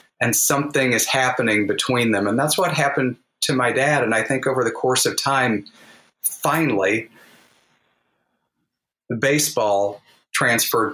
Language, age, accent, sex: English, 40-59, American, male